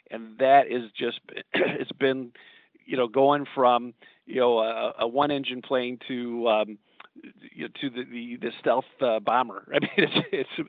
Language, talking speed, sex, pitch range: English, 180 wpm, male, 115-135 Hz